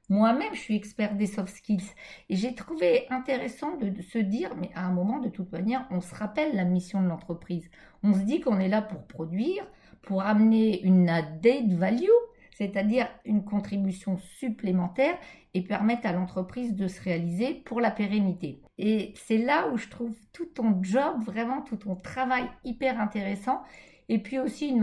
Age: 50-69